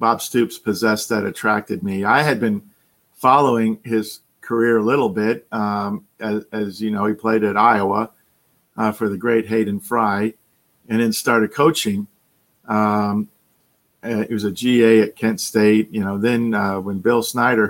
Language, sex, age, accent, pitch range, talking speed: English, male, 50-69, American, 105-115 Hz, 170 wpm